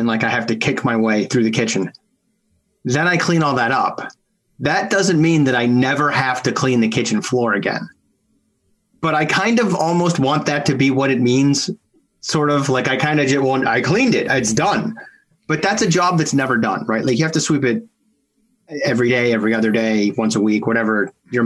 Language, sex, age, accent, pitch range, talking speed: English, male, 30-49, American, 125-165 Hz, 225 wpm